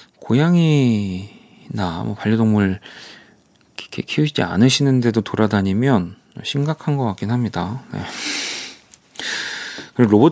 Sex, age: male, 40-59